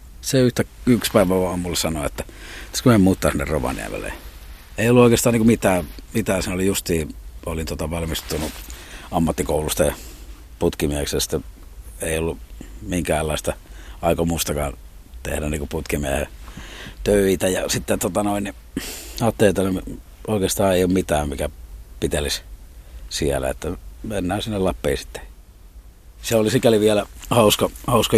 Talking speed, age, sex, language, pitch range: 120 wpm, 50-69, male, Finnish, 70-95 Hz